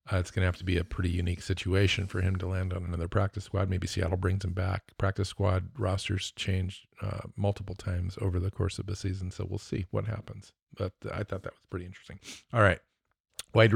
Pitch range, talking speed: 95-105 Hz, 225 wpm